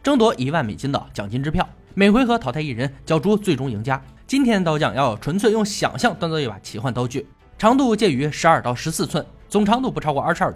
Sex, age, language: male, 20-39, Chinese